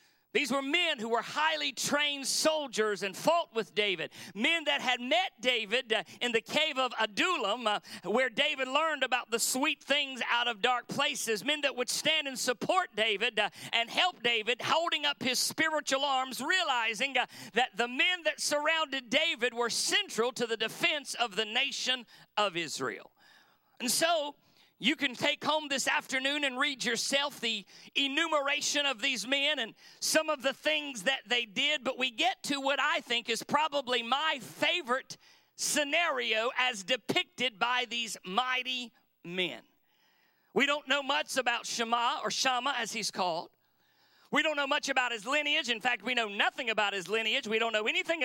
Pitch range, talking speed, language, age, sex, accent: 230-300 Hz, 175 wpm, English, 50-69, male, American